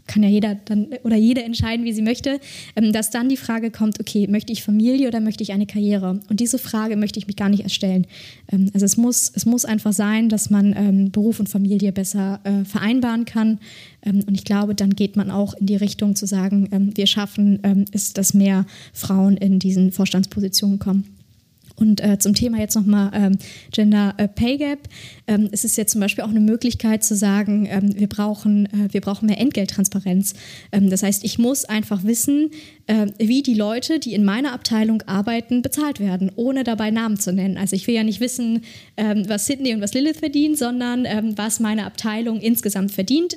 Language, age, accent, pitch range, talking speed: German, 20-39, German, 200-230 Hz, 200 wpm